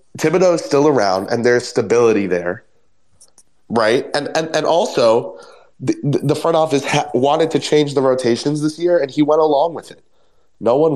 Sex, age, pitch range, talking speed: male, 20-39, 100-140 Hz, 180 wpm